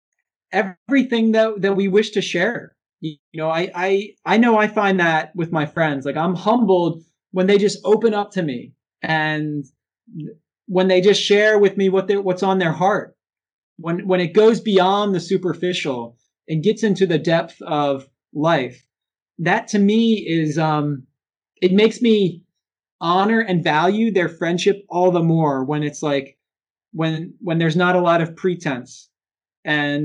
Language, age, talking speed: English, 20-39, 170 wpm